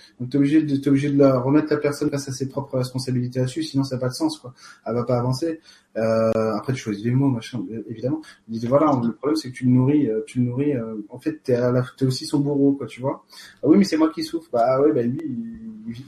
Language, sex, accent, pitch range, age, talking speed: French, male, French, 115-145 Hz, 30-49, 275 wpm